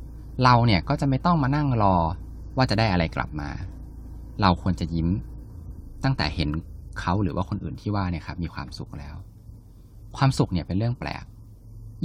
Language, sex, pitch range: Thai, male, 80-110 Hz